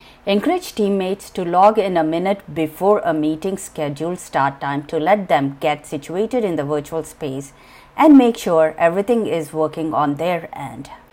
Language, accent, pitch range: English, Indian, 150-195 Hz